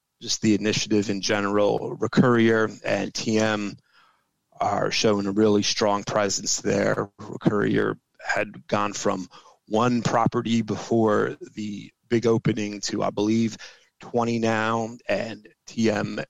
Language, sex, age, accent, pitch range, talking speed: English, male, 30-49, American, 105-120 Hz, 120 wpm